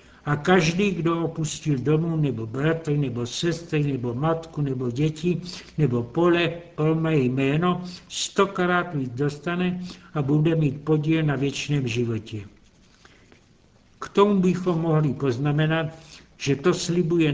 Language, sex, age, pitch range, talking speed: Czech, male, 60-79, 140-165 Hz, 125 wpm